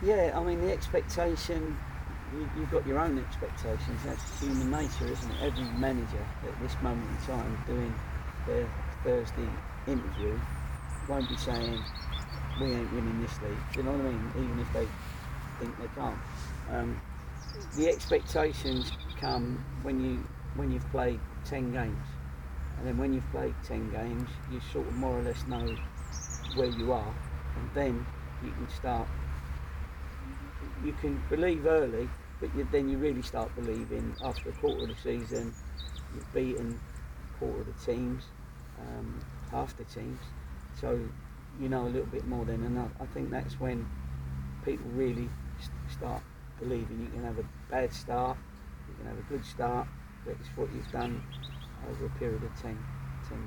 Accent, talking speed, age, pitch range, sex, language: British, 165 wpm, 40-59, 65-115 Hz, male, English